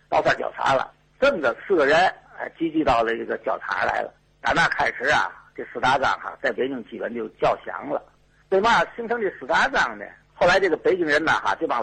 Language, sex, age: Chinese, male, 50-69